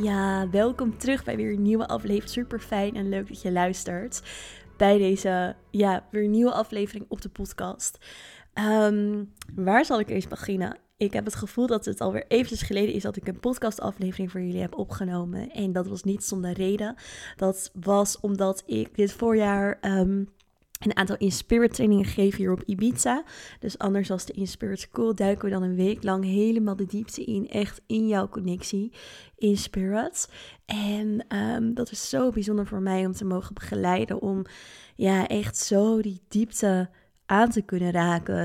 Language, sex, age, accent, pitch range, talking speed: Dutch, female, 20-39, Dutch, 190-215 Hz, 180 wpm